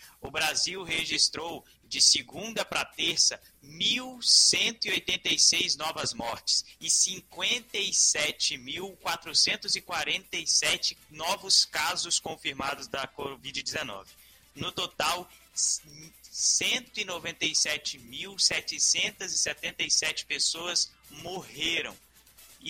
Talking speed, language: 60 wpm, Portuguese